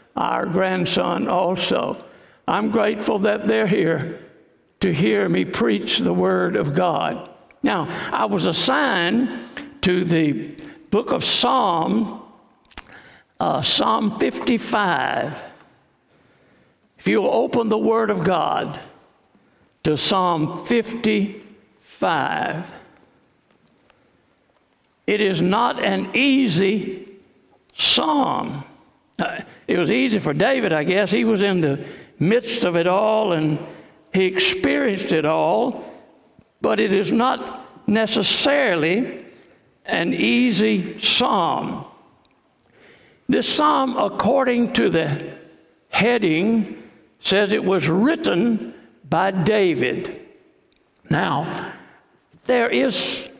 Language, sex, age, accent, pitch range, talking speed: English, male, 60-79, American, 180-235 Hz, 100 wpm